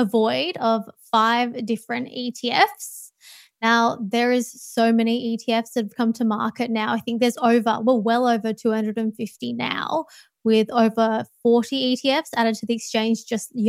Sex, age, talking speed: female, 20-39, 155 wpm